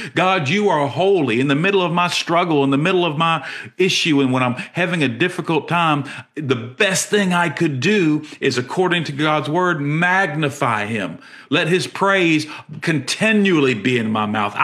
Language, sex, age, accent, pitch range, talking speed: English, male, 50-69, American, 135-185 Hz, 180 wpm